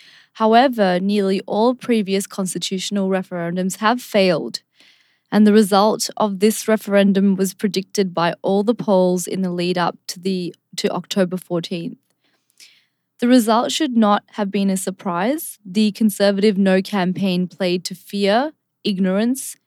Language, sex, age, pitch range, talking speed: English, female, 20-39, 185-215 Hz, 130 wpm